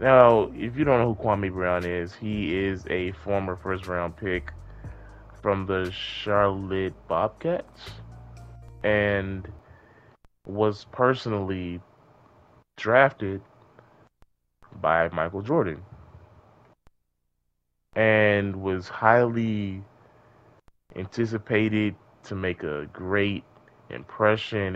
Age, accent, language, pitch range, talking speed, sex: 20-39, American, English, 90-110 Hz, 85 wpm, male